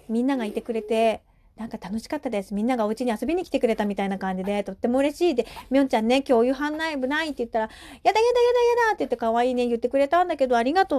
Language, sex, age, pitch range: Japanese, female, 40-59, 215-285 Hz